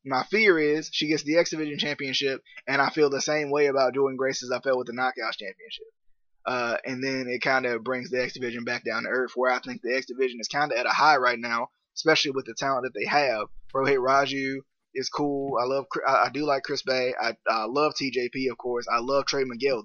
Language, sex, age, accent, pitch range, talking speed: English, male, 20-39, American, 130-150 Hz, 250 wpm